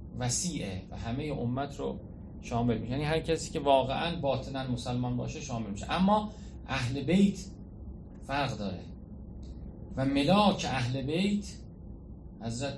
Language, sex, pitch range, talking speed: Persian, male, 105-145 Hz, 130 wpm